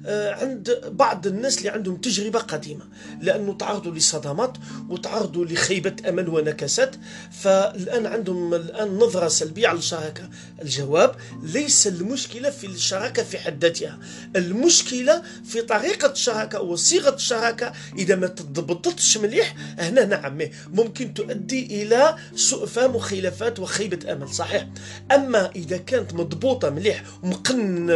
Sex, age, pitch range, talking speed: male, 40-59, 165-240 Hz, 120 wpm